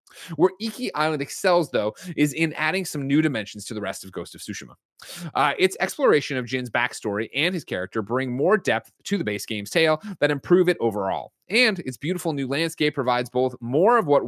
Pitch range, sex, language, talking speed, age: 115-160 Hz, male, English, 205 wpm, 30-49